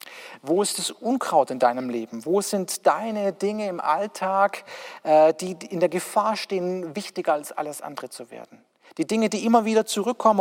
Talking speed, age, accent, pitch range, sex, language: 175 wpm, 40-59, German, 155-190 Hz, male, German